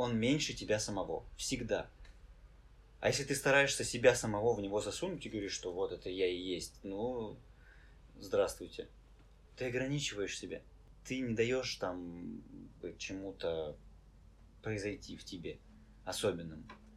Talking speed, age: 125 wpm, 20-39